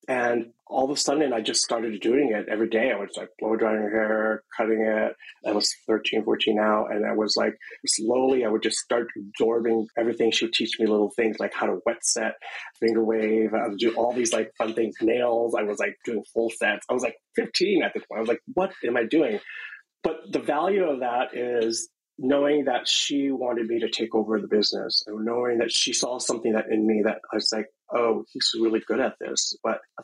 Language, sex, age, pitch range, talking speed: English, male, 30-49, 110-115 Hz, 230 wpm